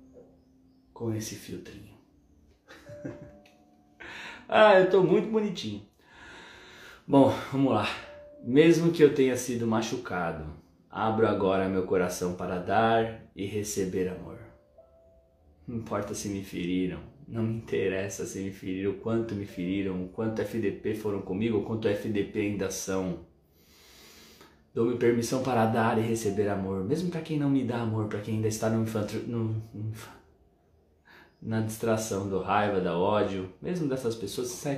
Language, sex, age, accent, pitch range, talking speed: Portuguese, male, 20-39, Brazilian, 100-130 Hz, 145 wpm